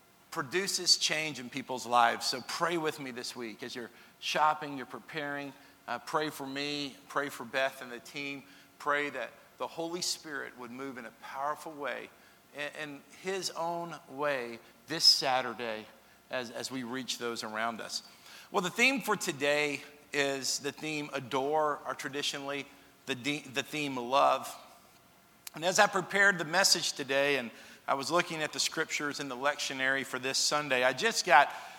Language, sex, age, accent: English, male, 50-69, American